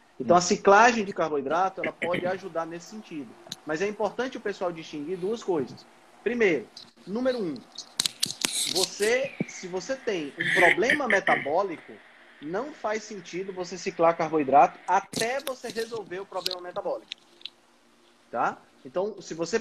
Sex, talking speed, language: male, 130 wpm, Portuguese